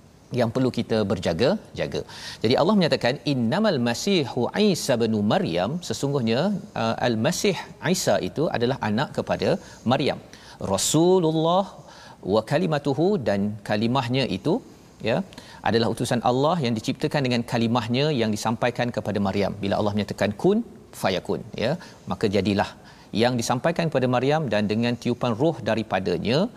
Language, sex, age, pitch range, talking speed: Malayalam, male, 40-59, 110-140 Hz, 125 wpm